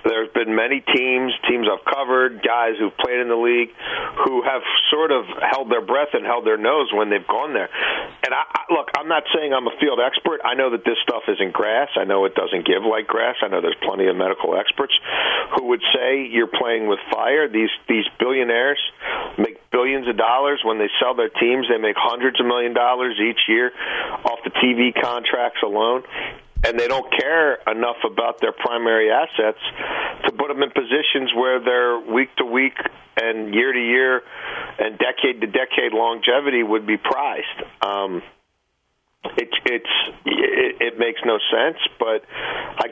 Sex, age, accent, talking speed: male, 40-59, American, 185 wpm